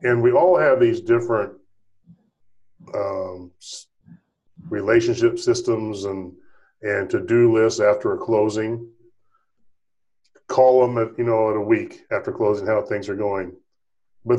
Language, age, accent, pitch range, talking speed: English, 40-59, American, 120-185 Hz, 130 wpm